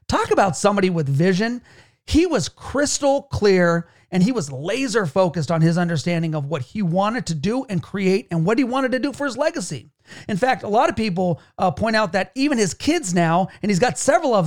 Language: English